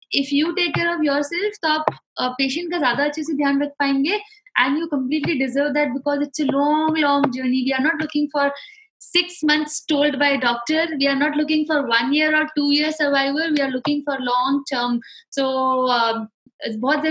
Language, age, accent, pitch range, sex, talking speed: English, 20-39, Indian, 265-305 Hz, female, 180 wpm